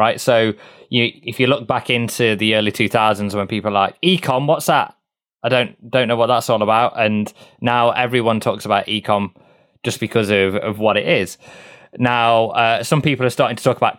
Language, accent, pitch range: English, British, 105-125 Hz